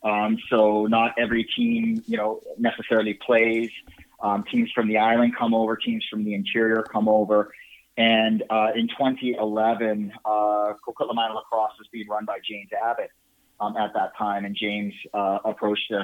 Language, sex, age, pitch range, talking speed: English, male, 30-49, 105-120 Hz, 160 wpm